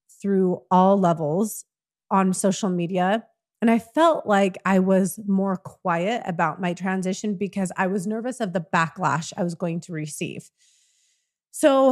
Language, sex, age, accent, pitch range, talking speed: English, female, 30-49, American, 175-215 Hz, 150 wpm